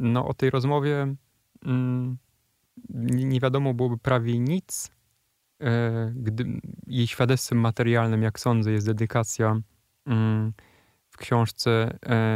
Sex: male